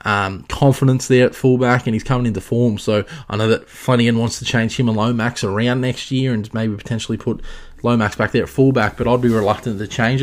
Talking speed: 230 wpm